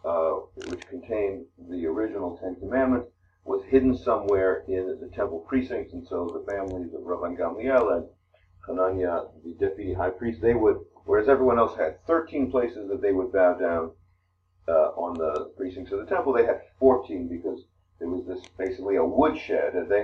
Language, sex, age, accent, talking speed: English, male, 50-69, American, 175 wpm